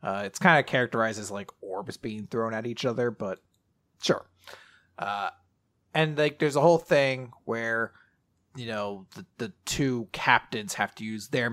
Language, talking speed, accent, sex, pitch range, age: English, 170 wpm, American, male, 110-160 Hz, 30-49